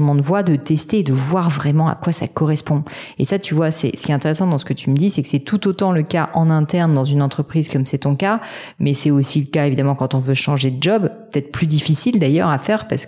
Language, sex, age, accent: French, female, 40-59, French